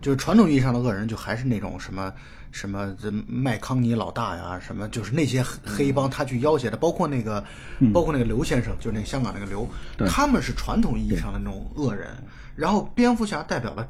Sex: male